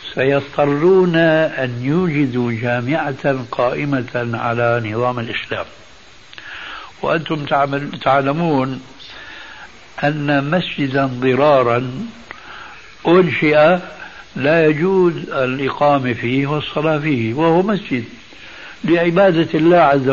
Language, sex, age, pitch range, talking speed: Arabic, male, 60-79, 125-160 Hz, 75 wpm